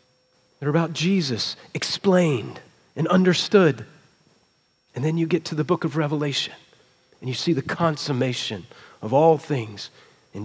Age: 40-59